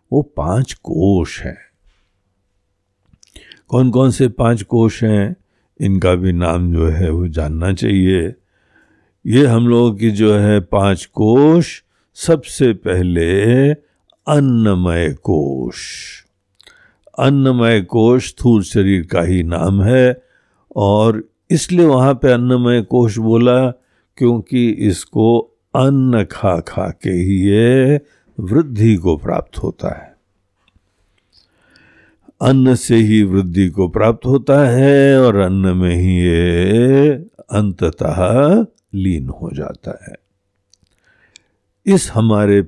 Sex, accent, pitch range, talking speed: male, native, 90-125 Hz, 105 wpm